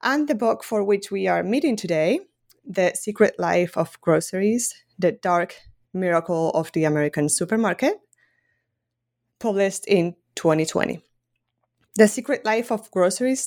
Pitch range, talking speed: 170-235 Hz, 130 wpm